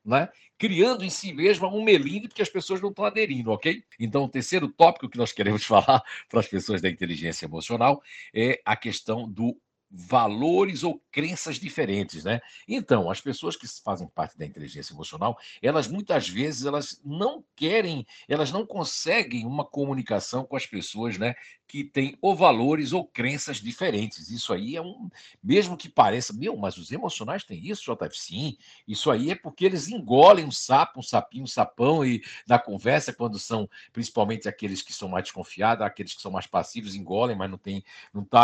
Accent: Brazilian